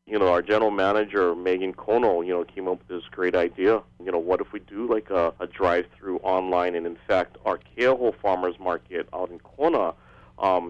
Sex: male